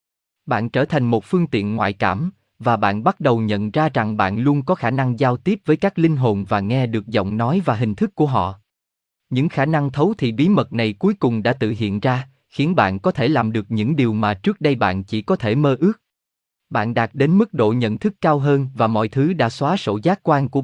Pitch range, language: 105-155 Hz, Vietnamese